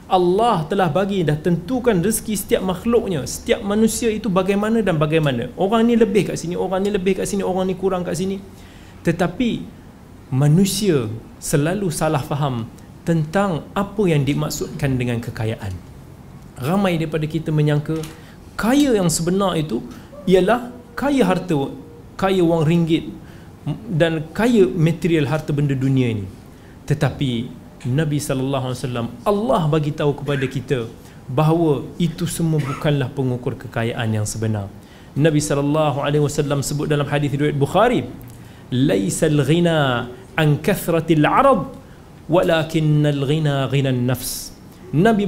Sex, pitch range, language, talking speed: male, 135-185 Hz, Malay, 125 wpm